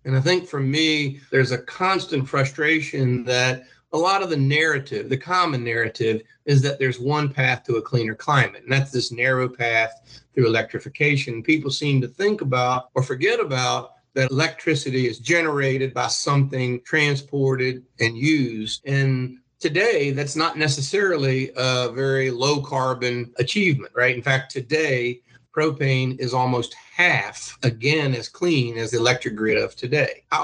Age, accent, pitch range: 50-69, American, 125-145 Hz